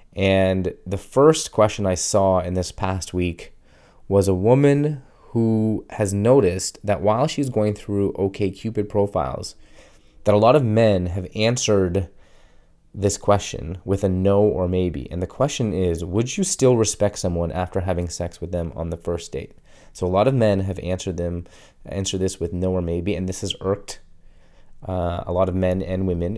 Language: English